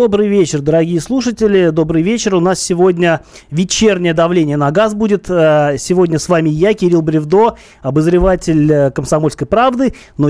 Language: Russian